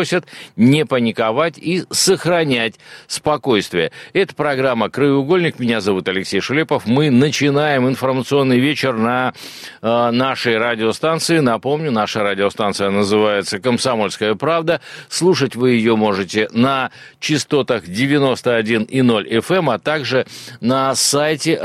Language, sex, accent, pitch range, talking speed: Russian, male, native, 110-145 Hz, 110 wpm